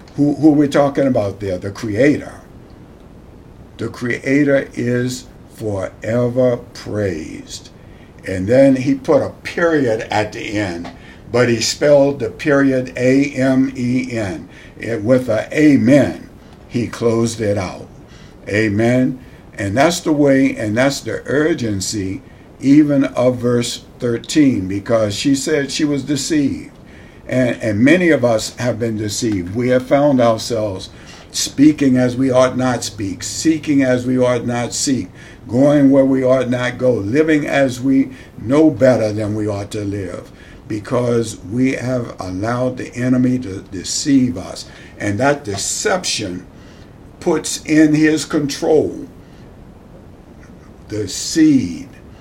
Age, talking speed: 60-79, 130 wpm